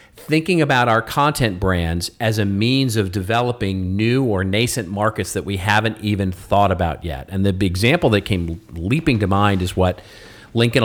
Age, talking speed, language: 40-59, 175 wpm, English